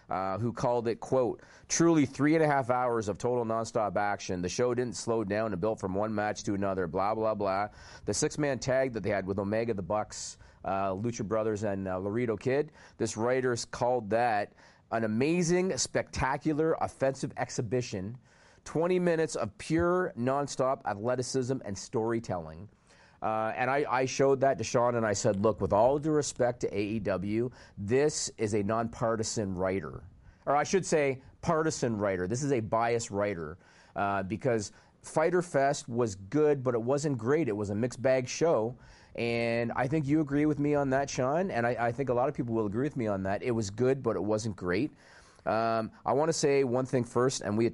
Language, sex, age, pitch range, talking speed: English, male, 40-59, 110-135 Hz, 195 wpm